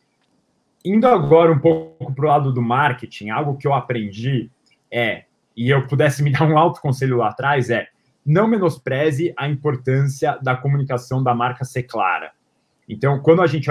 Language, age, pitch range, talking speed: Portuguese, 20-39, 125-150 Hz, 170 wpm